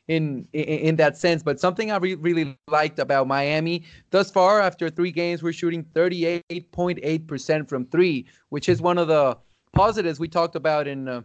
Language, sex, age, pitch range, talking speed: English, male, 20-39, 135-170 Hz, 185 wpm